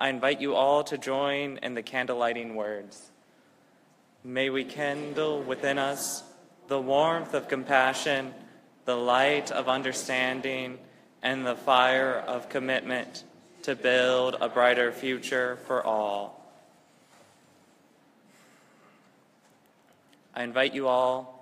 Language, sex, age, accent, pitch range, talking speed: English, male, 20-39, American, 115-130 Hz, 110 wpm